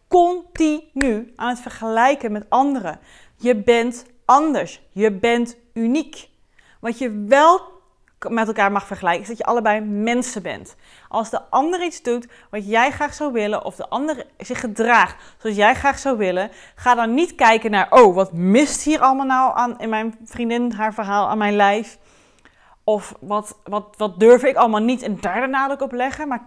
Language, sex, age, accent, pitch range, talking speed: Dutch, female, 30-49, Dutch, 210-260 Hz, 180 wpm